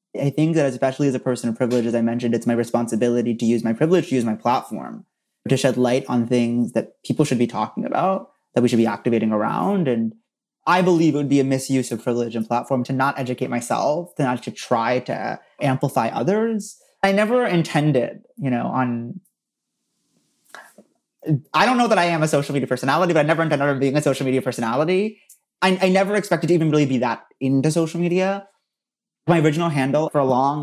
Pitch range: 130-165 Hz